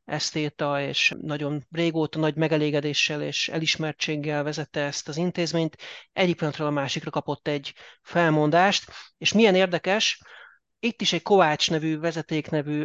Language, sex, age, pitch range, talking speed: Hungarian, male, 30-49, 150-175 Hz, 130 wpm